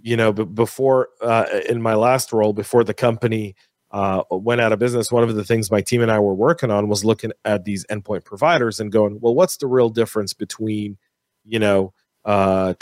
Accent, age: American, 40-59